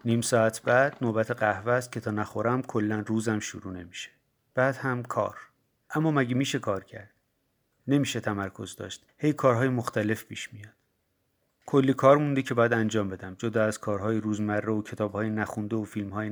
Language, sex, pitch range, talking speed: Persian, male, 105-130 Hz, 170 wpm